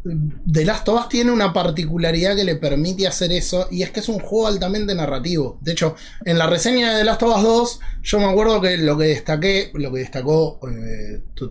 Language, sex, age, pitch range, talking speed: Spanish, male, 20-39, 135-205 Hz, 220 wpm